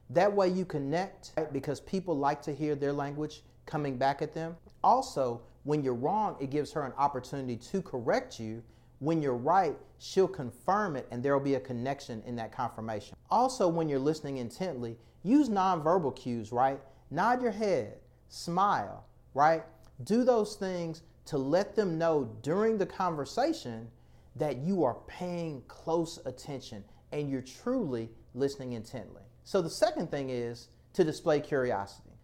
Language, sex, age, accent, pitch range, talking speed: English, male, 40-59, American, 125-185 Hz, 155 wpm